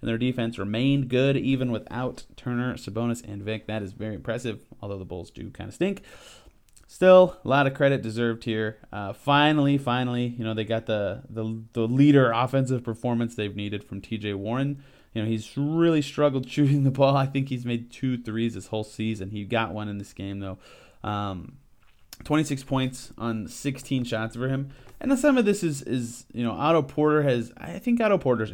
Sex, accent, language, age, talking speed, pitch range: male, American, English, 30-49, 200 wpm, 105-130 Hz